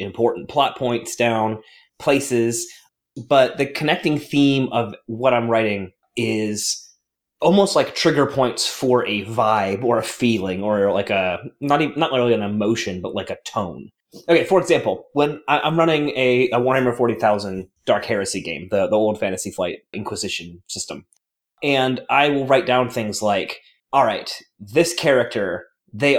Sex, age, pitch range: male, 30-49, 115-150 Hz